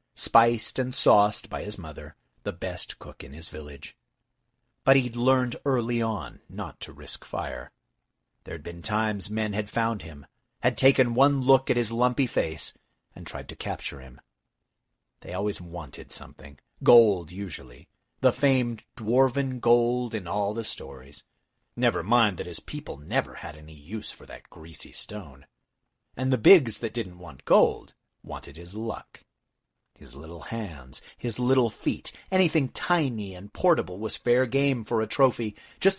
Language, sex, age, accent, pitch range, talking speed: English, male, 40-59, American, 85-125 Hz, 160 wpm